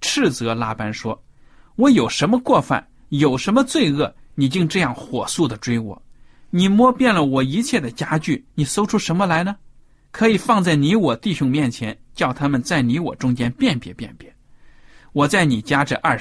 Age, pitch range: 50-69, 125-195 Hz